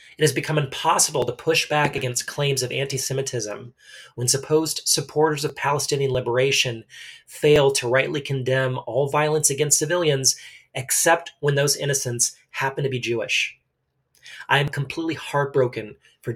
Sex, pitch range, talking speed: male, 125-145 Hz, 140 wpm